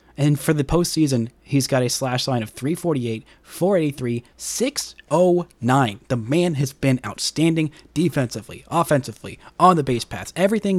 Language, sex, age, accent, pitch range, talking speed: English, male, 30-49, American, 120-150 Hz, 140 wpm